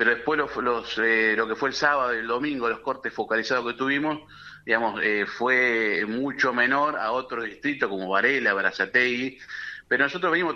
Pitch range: 115-150 Hz